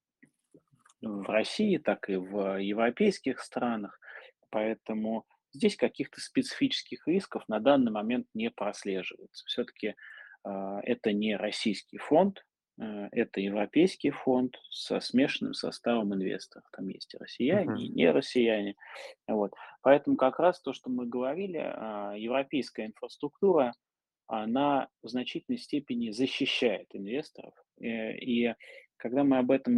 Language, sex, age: Russian, male, 20-39